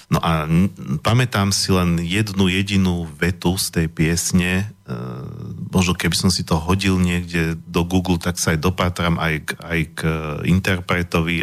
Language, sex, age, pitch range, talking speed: Slovak, male, 40-59, 85-100 Hz, 150 wpm